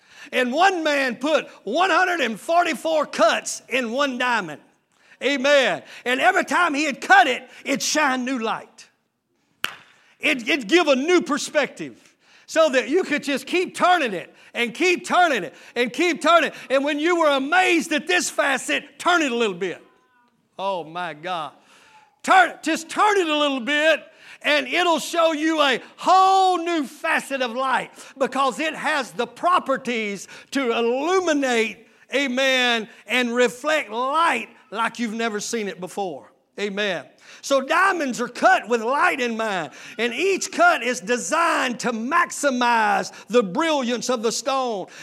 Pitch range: 240-320 Hz